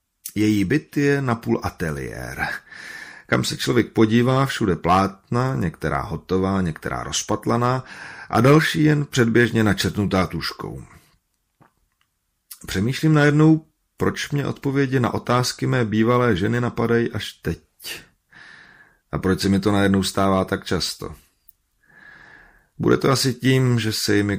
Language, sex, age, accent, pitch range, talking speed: Czech, male, 30-49, native, 90-120 Hz, 125 wpm